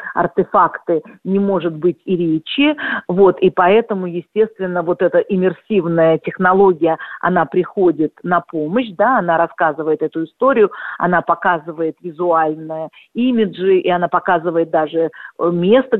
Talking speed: 115 wpm